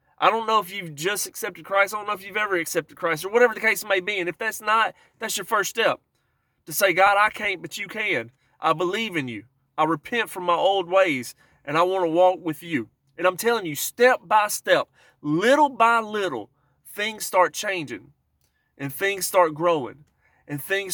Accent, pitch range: American, 145-195 Hz